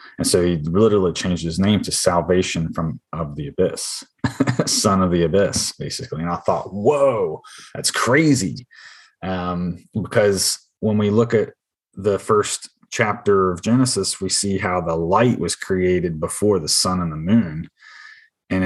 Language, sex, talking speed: English, male, 160 wpm